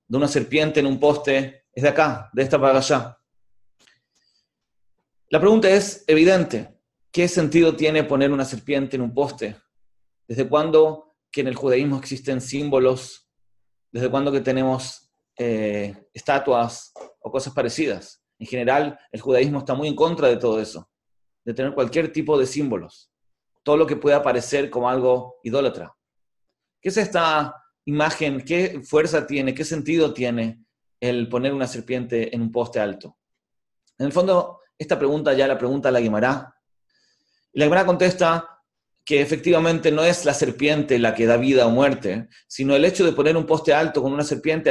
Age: 30-49